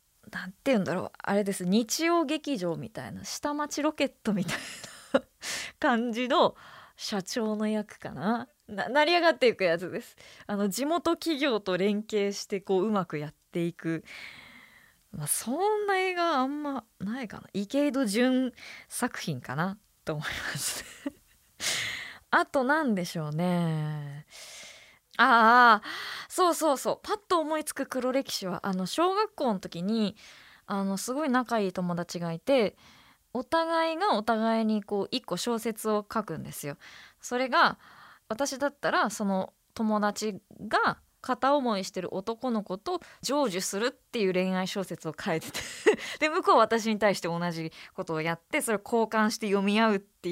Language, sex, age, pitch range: Japanese, female, 20-39, 185-270 Hz